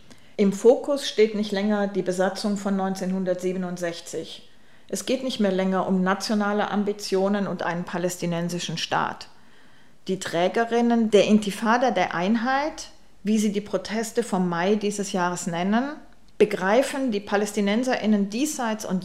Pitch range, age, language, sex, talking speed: 185-230 Hz, 40-59, German, female, 130 wpm